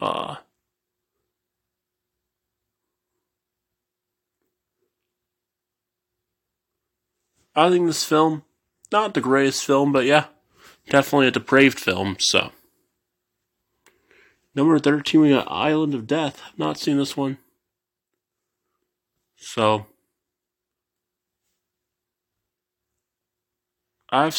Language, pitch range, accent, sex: English, 125-155 Hz, American, male